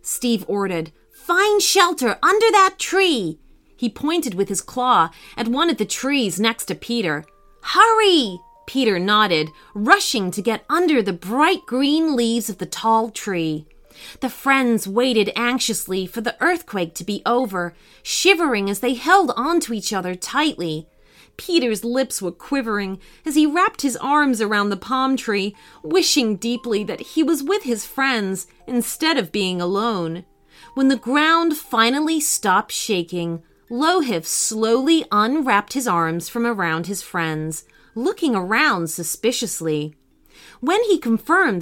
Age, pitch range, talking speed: 30-49, 195-305 Hz, 145 wpm